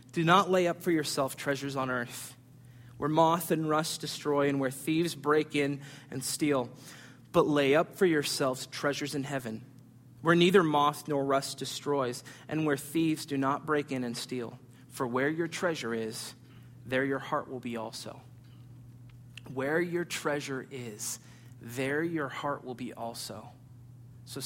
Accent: American